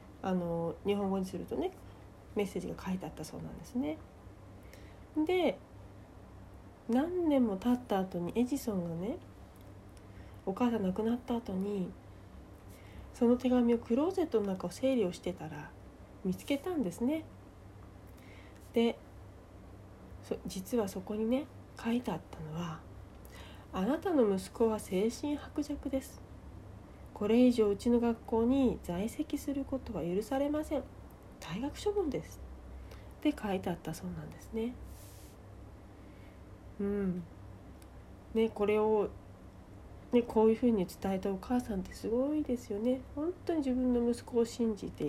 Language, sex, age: Japanese, female, 40-59